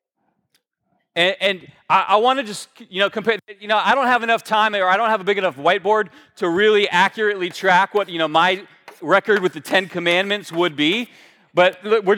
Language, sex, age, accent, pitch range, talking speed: English, male, 30-49, American, 185-245 Hz, 195 wpm